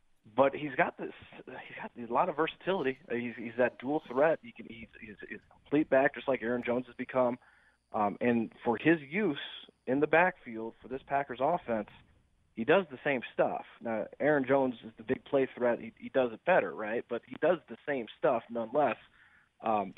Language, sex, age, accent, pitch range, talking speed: English, male, 30-49, American, 105-130 Hz, 190 wpm